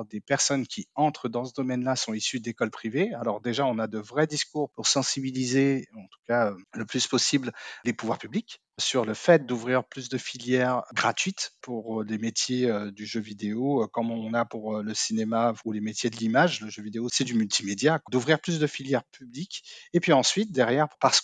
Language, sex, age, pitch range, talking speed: French, male, 40-59, 115-145 Hz, 200 wpm